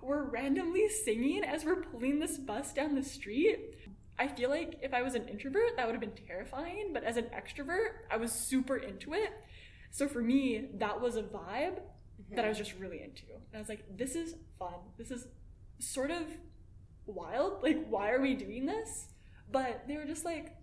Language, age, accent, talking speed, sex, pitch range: English, 10-29, American, 200 wpm, female, 220-340 Hz